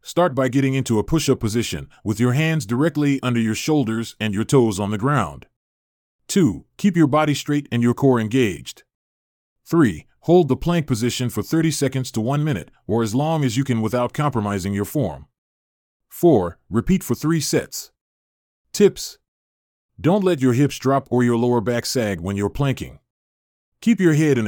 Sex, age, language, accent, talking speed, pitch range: male, 30-49, English, American, 180 wpm, 100-140 Hz